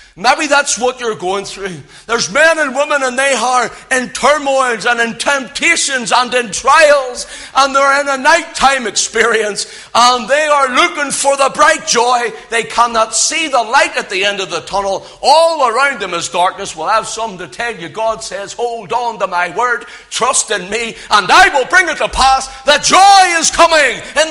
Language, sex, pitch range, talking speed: English, male, 170-265 Hz, 195 wpm